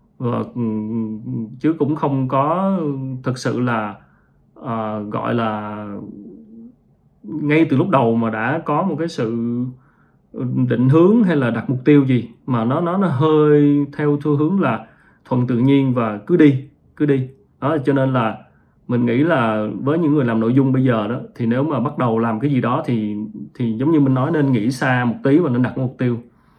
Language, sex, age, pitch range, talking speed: Vietnamese, male, 20-39, 115-150 Hz, 195 wpm